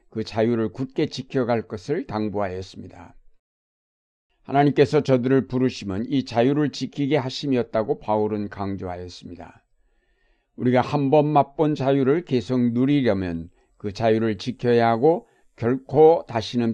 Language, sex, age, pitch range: Korean, male, 60-79, 115-140 Hz